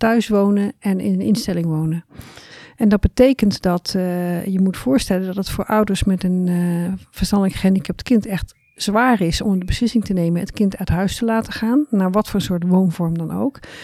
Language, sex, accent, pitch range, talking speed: Dutch, female, Dutch, 185-220 Hz, 205 wpm